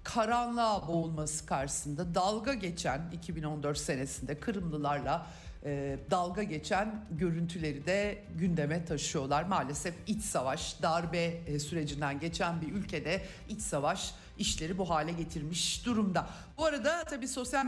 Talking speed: 110 wpm